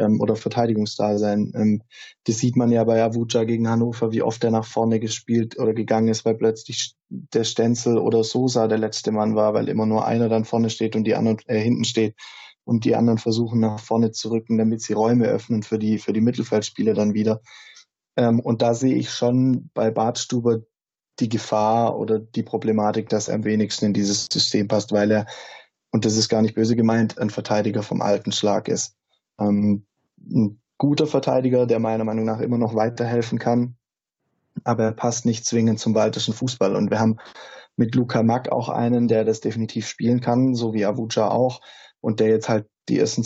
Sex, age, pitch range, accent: male, 20-39, 110-120 Hz, German